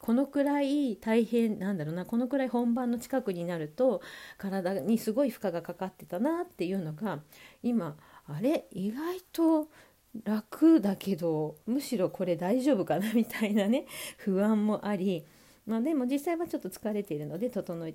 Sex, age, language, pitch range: female, 40-59, Japanese, 175-265 Hz